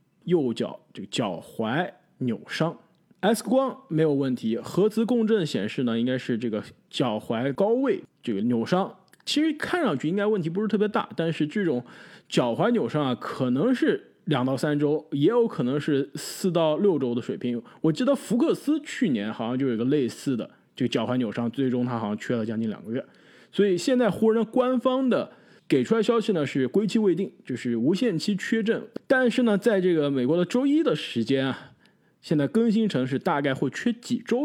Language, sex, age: Chinese, male, 20-39